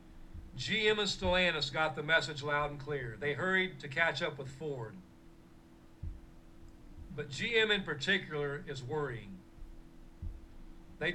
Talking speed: 125 wpm